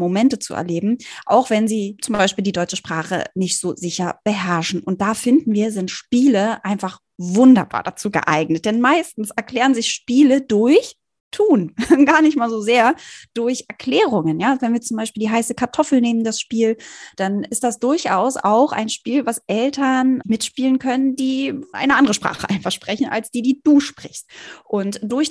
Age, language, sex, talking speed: 20-39, German, female, 175 wpm